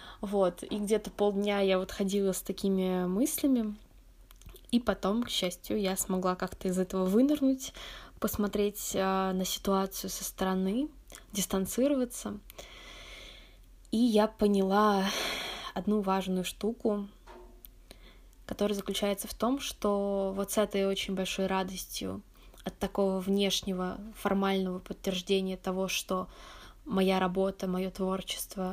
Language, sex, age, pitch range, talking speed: Russian, female, 20-39, 190-215 Hz, 115 wpm